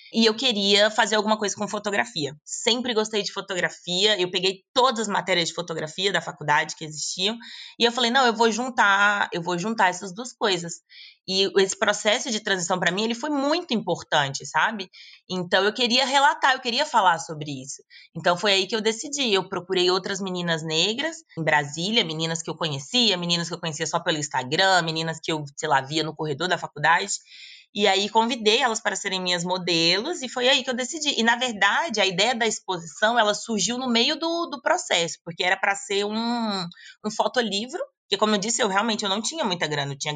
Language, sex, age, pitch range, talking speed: Portuguese, female, 20-39, 165-230 Hz, 205 wpm